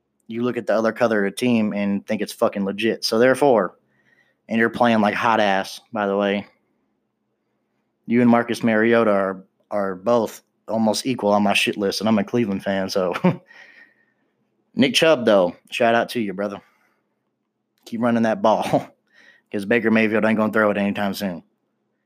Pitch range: 105-125 Hz